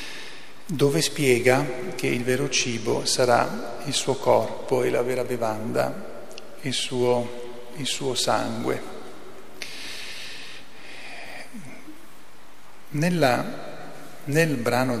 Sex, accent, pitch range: male, native, 125-150 Hz